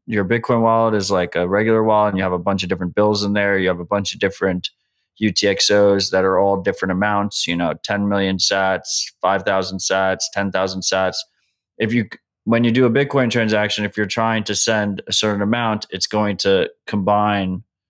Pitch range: 95-110 Hz